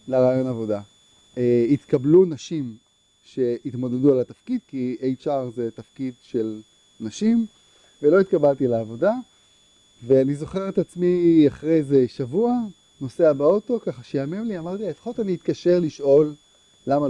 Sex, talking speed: male, 125 wpm